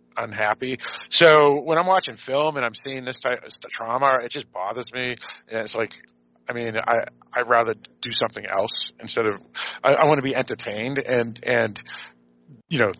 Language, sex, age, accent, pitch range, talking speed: English, male, 40-59, American, 110-140 Hz, 180 wpm